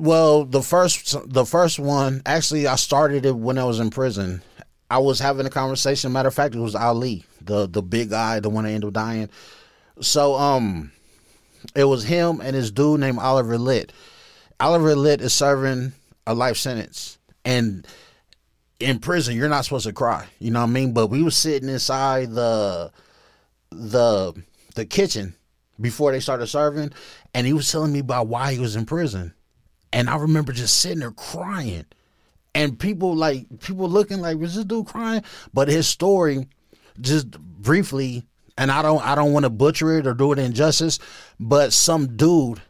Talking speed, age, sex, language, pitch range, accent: 180 wpm, 30-49, male, English, 115-150 Hz, American